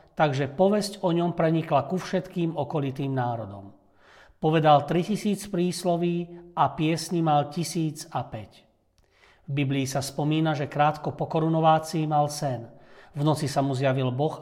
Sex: male